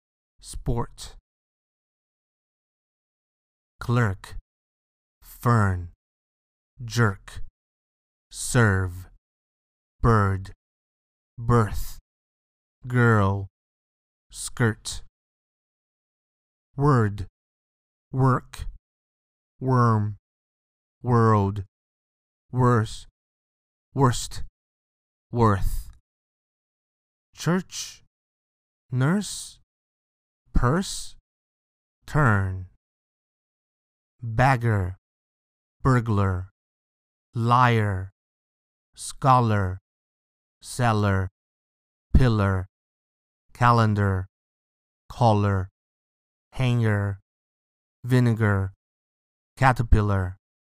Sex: male